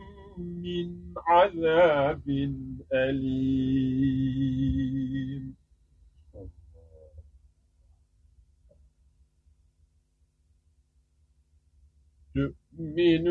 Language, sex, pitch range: Turkish, male, 130-210 Hz